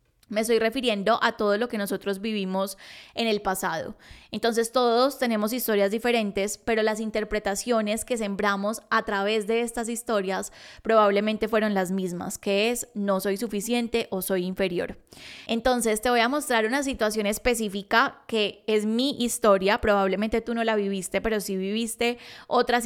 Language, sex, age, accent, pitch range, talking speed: Spanish, female, 10-29, Colombian, 200-230 Hz, 160 wpm